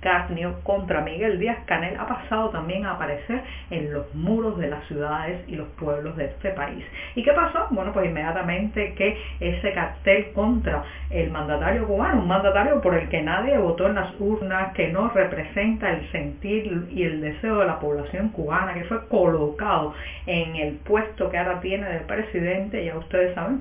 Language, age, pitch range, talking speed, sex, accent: Spanish, 40-59, 165-210 Hz, 180 wpm, female, American